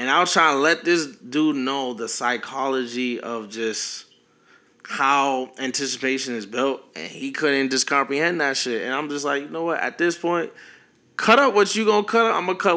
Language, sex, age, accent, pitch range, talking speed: English, male, 20-39, American, 110-140 Hz, 210 wpm